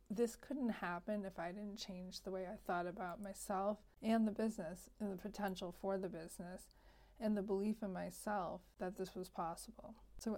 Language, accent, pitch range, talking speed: English, American, 190-210 Hz, 185 wpm